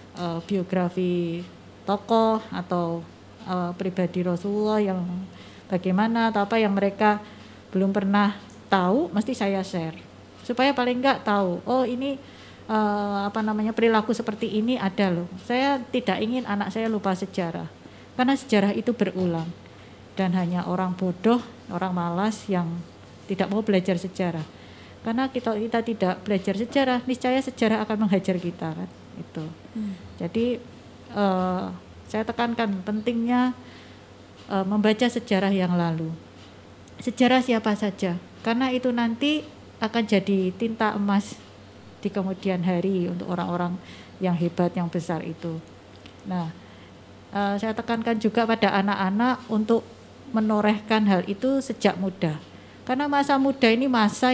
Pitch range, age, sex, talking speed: 175-225 Hz, 20-39, female, 125 wpm